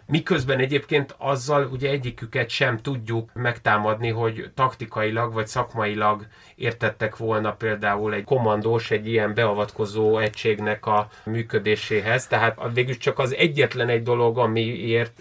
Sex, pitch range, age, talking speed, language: male, 115-140 Hz, 30-49, 120 wpm, Hungarian